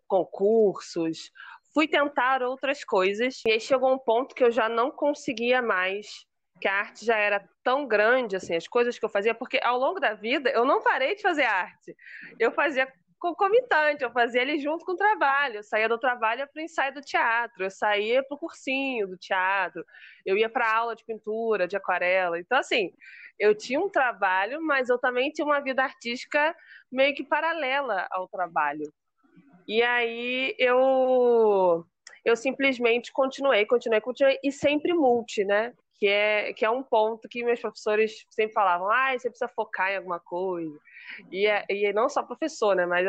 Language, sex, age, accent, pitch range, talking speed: Portuguese, female, 20-39, Brazilian, 210-275 Hz, 180 wpm